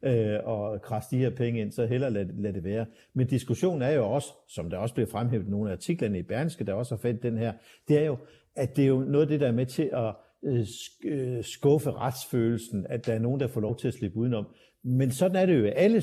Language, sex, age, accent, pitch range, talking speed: Danish, male, 60-79, native, 115-150 Hz, 255 wpm